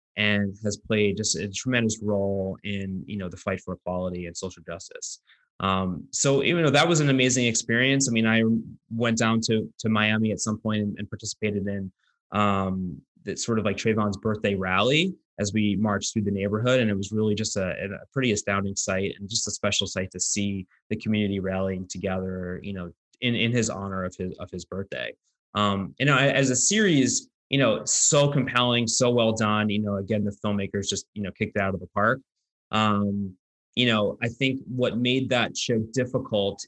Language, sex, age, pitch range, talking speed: English, male, 20-39, 95-115 Hz, 205 wpm